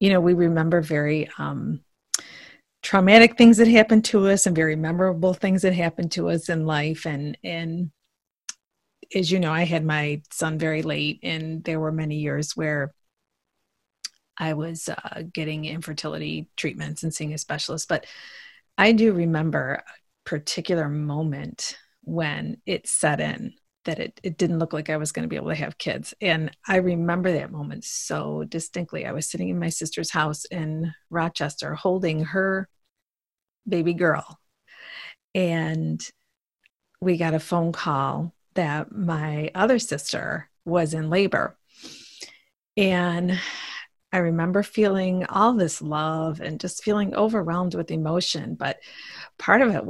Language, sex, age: English, female, 30-49